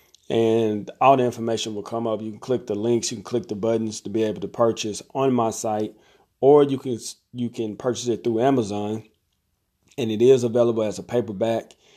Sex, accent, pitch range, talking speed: male, American, 105-120 Hz, 205 wpm